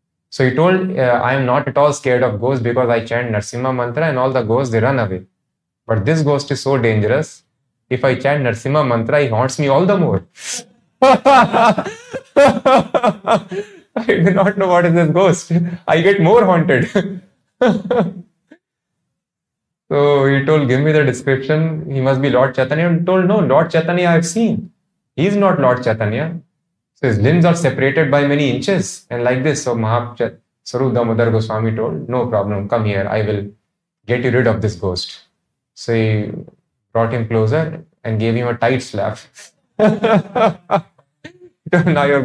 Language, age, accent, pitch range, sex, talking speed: English, 20-39, Indian, 120-170 Hz, male, 170 wpm